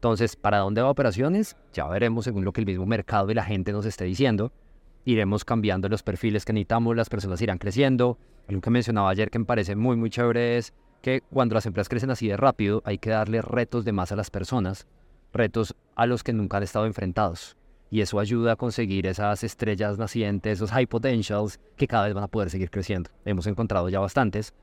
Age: 20-39